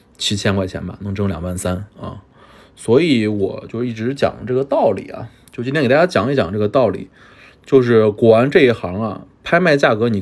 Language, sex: Chinese, male